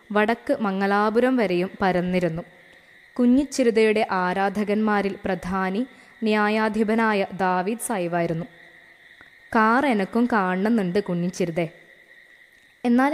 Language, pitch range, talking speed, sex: Malayalam, 185-245 Hz, 70 wpm, female